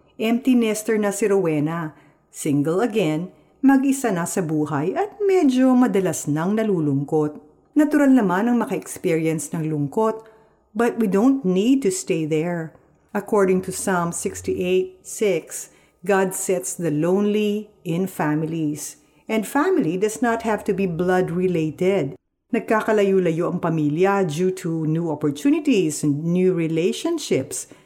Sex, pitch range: female, 160-225 Hz